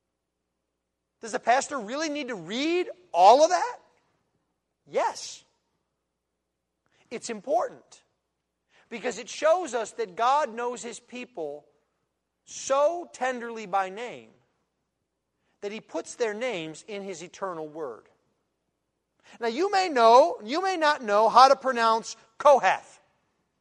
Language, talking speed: English, 120 wpm